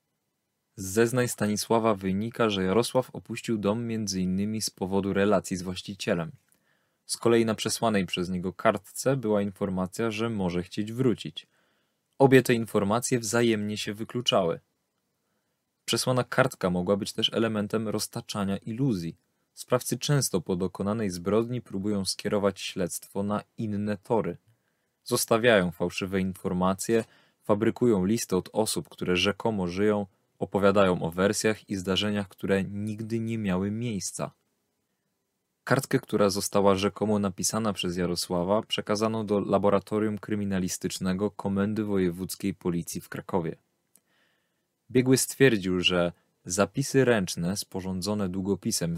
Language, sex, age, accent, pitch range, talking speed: Polish, male, 20-39, native, 95-115 Hz, 115 wpm